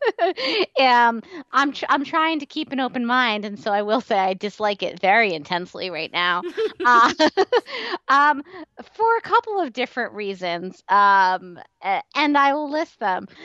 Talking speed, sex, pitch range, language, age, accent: 160 wpm, female, 220-330 Hz, English, 30-49, American